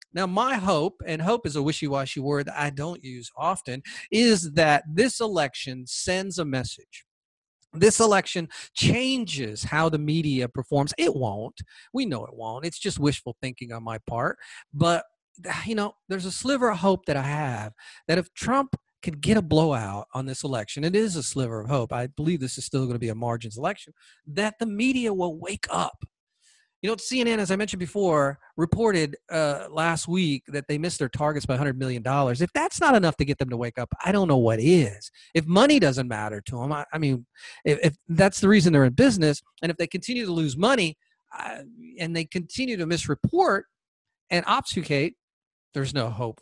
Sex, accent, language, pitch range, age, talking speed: male, American, English, 130-195 Hz, 40-59, 200 wpm